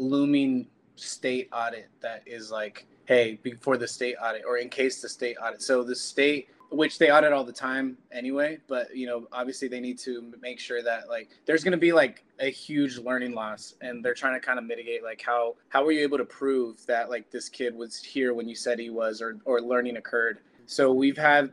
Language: English